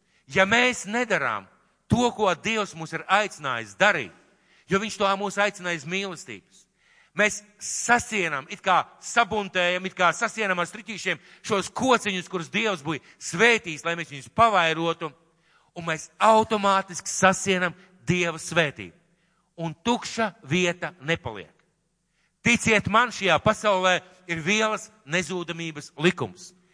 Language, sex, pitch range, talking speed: French, male, 170-215 Hz, 120 wpm